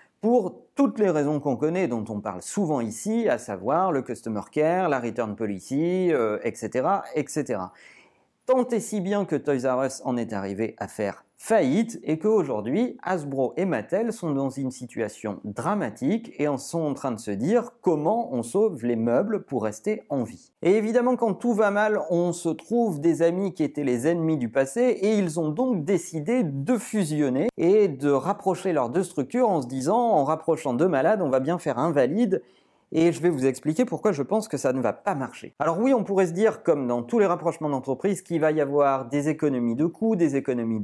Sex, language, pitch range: male, French, 135-210 Hz